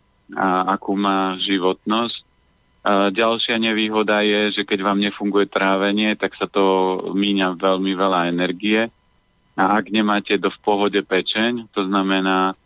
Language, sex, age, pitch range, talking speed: Slovak, male, 30-49, 95-105 Hz, 135 wpm